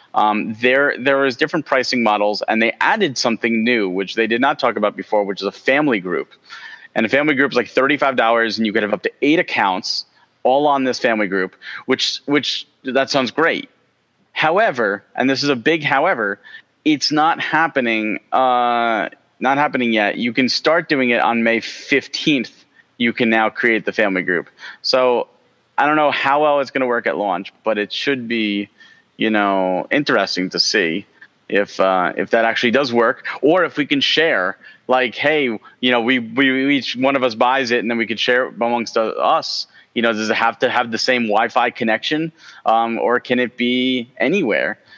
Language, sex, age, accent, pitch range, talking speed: English, male, 30-49, American, 110-135 Hz, 195 wpm